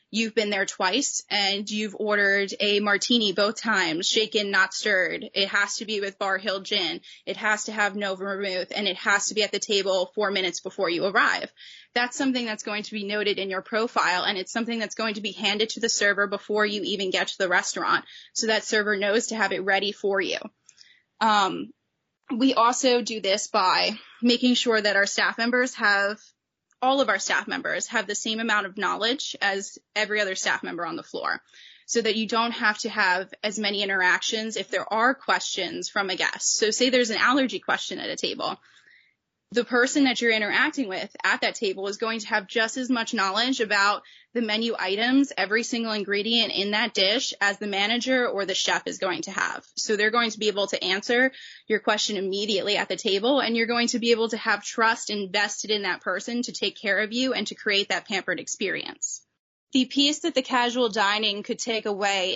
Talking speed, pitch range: 215 wpm, 200-230 Hz